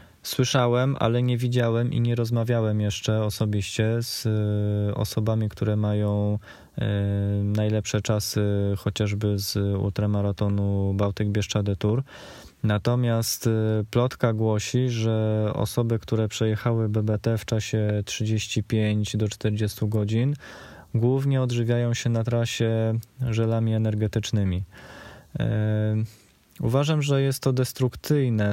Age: 20-39